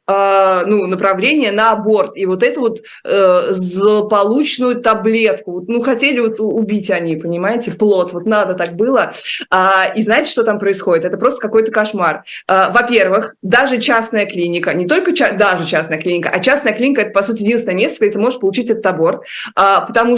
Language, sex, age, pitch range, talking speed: Russian, female, 20-39, 195-240 Hz, 160 wpm